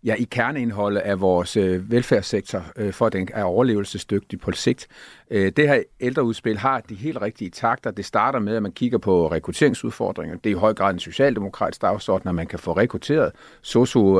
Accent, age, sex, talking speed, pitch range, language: native, 50-69, male, 180 wpm, 100-125 Hz, Danish